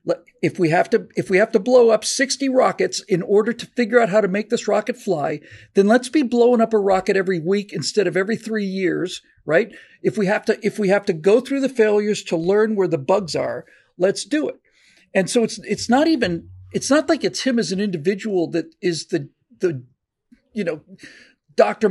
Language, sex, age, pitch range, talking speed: English, male, 50-69, 190-240 Hz, 220 wpm